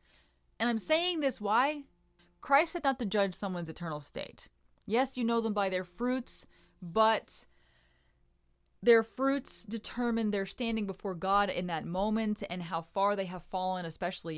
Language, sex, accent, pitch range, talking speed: English, female, American, 175-240 Hz, 160 wpm